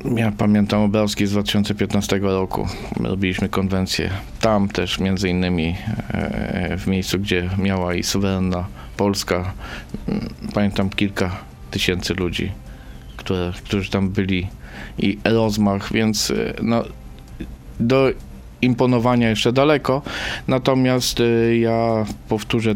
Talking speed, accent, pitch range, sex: 95 wpm, native, 95-110 Hz, male